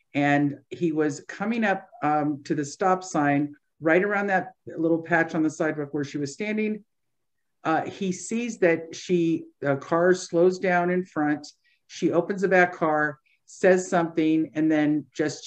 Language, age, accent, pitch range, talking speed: English, 50-69, American, 145-180 Hz, 170 wpm